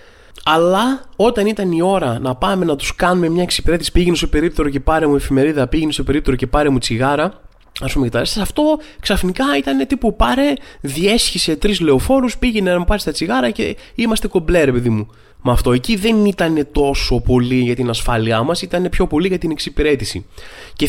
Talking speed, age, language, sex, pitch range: 190 wpm, 20-39, Greek, male, 125-185 Hz